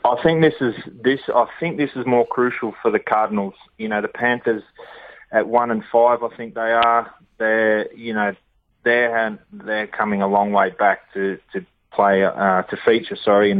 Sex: male